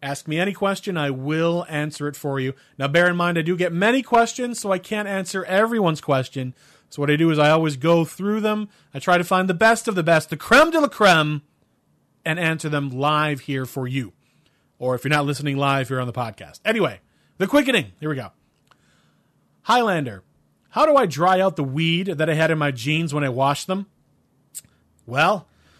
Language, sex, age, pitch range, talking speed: English, male, 30-49, 140-195 Hz, 210 wpm